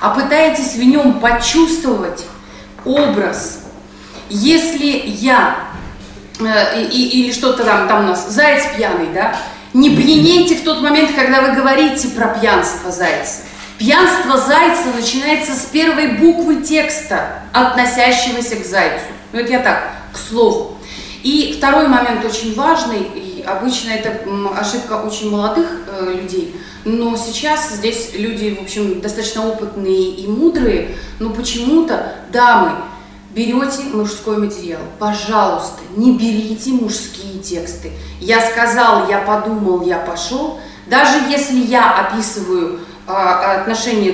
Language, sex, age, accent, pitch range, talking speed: Russian, female, 30-49, native, 200-265 Hz, 115 wpm